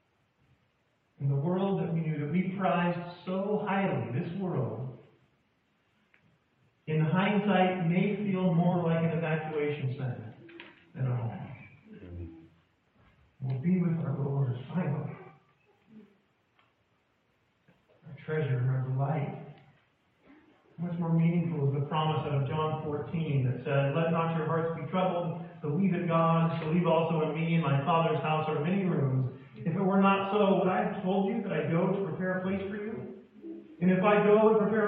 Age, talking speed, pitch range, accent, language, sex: 40-59, 155 wpm, 135-185 Hz, American, English, male